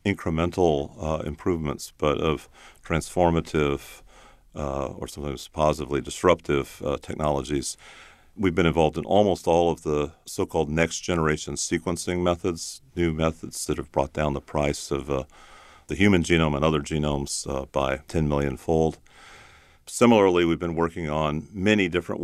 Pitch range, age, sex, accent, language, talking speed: 75-85 Hz, 50-69, male, American, English, 145 wpm